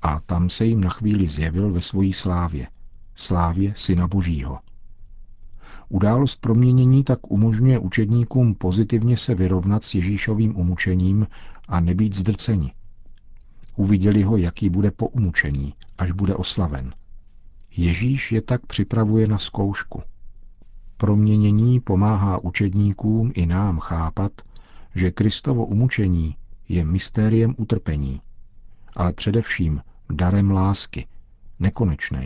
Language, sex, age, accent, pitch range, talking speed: Czech, male, 50-69, native, 90-105 Hz, 110 wpm